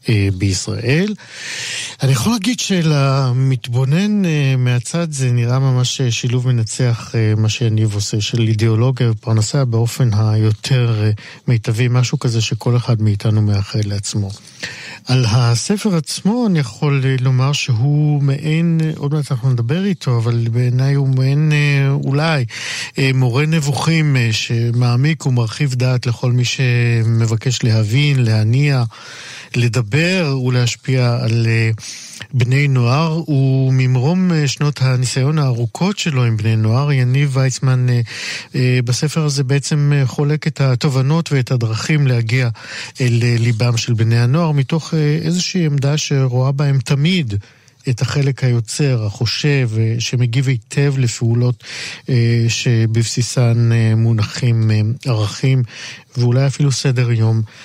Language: Hebrew